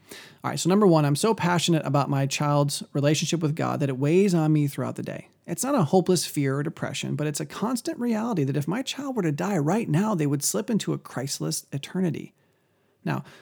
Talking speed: 230 wpm